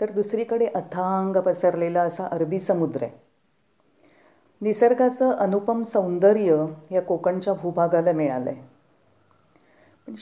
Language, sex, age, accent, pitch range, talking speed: Marathi, female, 40-59, native, 160-215 Hz, 95 wpm